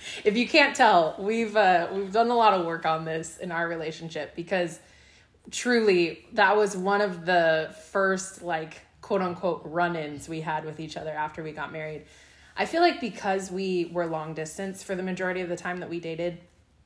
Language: English